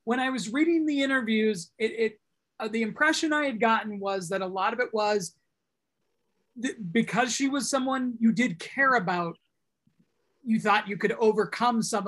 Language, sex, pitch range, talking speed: English, male, 205-265 Hz, 180 wpm